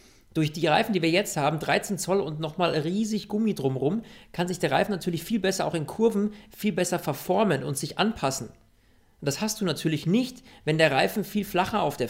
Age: 40-59